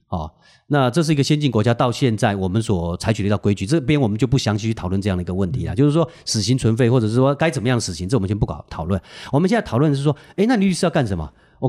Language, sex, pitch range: Chinese, male, 105-160 Hz